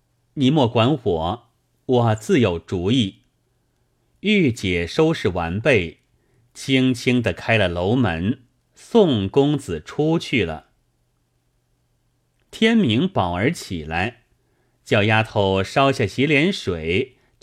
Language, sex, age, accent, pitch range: Chinese, male, 30-49, native, 105-135 Hz